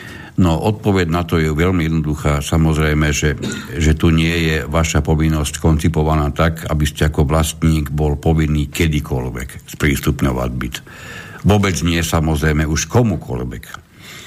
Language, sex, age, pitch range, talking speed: Slovak, male, 60-79, 75-90 Hz, 130 wpm